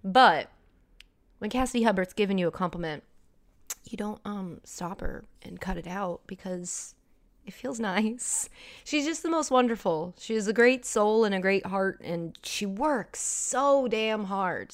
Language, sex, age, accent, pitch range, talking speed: English, female, 20-39, American, 170-235 Hz, 165 wpm